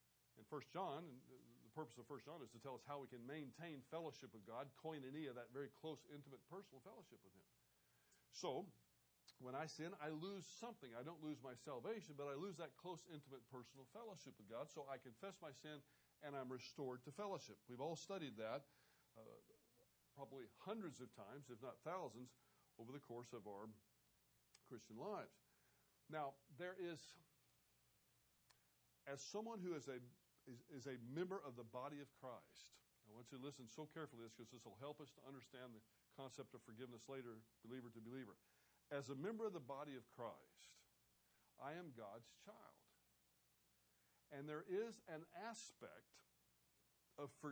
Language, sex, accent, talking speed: English, male, American, 175 wpm